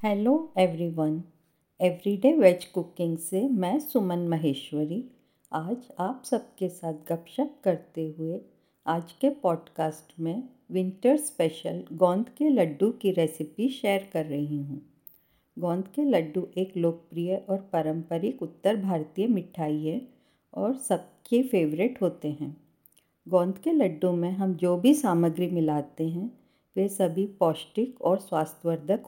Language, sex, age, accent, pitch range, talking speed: Hindi, female, 50-69, native, 165-215 Hz, 130 wpm